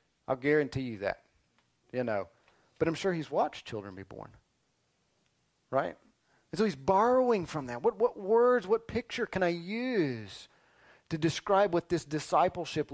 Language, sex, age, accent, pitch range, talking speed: English, male, 30-49, American, 120-165 Hz, 160 wpm